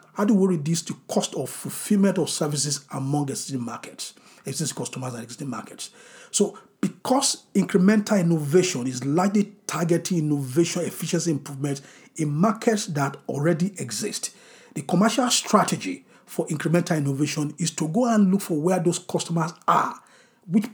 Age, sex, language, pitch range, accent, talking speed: 50-69, male, English, 145-195 Hz, Nigerian, 145 wpm